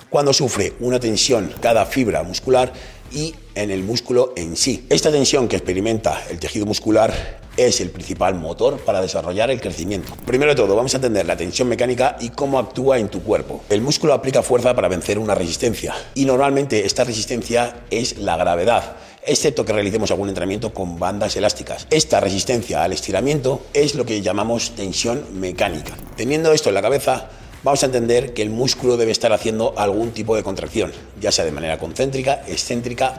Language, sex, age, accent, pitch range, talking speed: Spanish, male, 40-59, Spanish, 100-130 Hz, 180 wpm